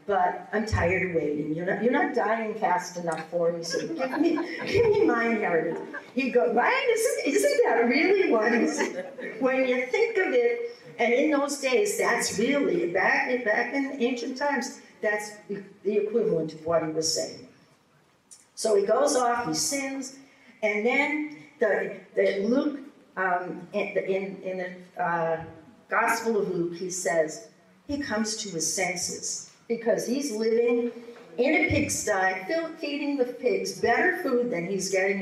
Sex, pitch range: female, 180-270 Hz